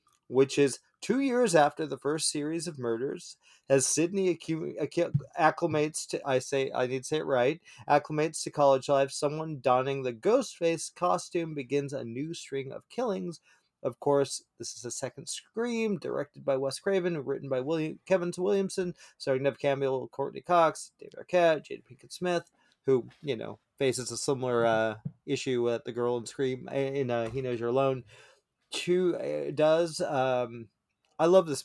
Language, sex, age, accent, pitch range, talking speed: English, male, 30-49, American, 135-180 Hz, 165 wpm